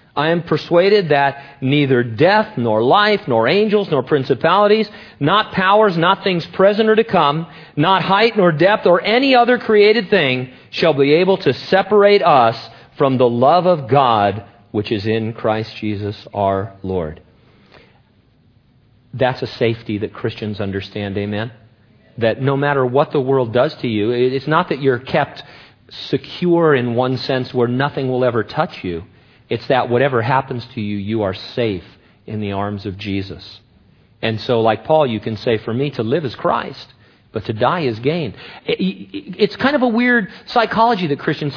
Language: English